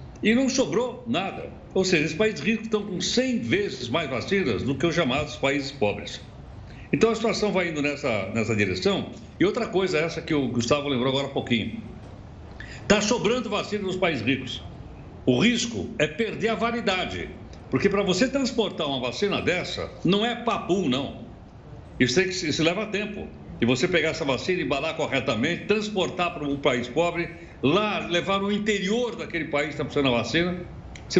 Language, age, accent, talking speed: Portuguese, 60-79, Brazilian, 180 wpm